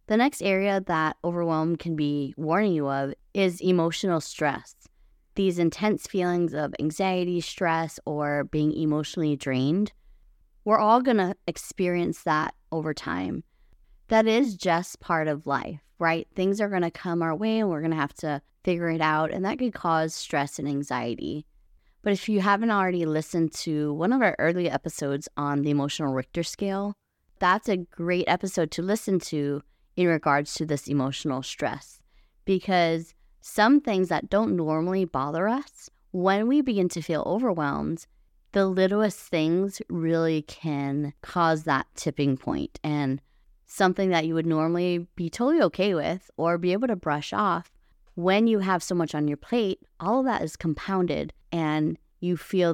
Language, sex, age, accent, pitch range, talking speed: English, female, 20-39, American, 150-190 Hz, 165 wpm